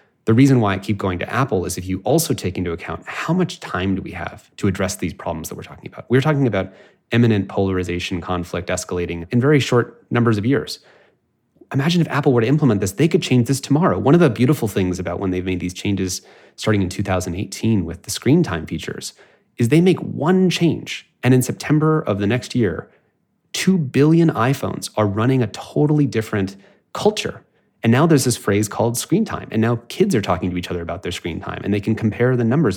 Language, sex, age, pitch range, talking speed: English, male, 30-49, 100-140 Hz, 220 wpm